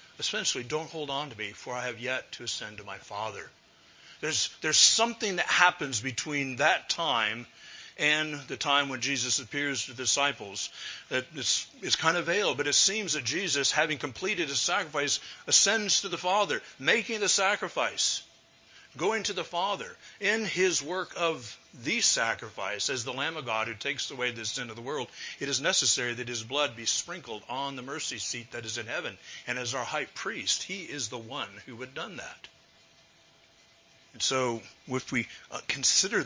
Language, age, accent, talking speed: English, 50-69, American, 180 wpm